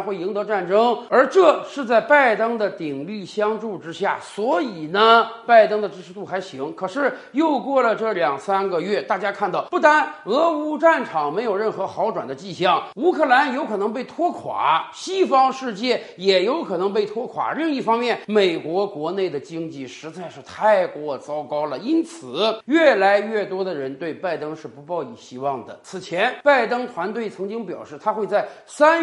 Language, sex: Chinese, male